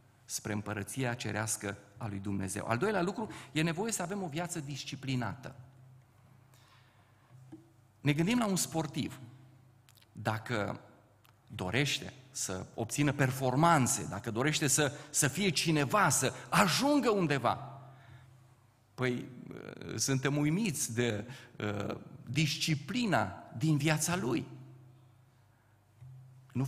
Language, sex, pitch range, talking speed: Romanian, male, 120-180 Hz, 100 wpm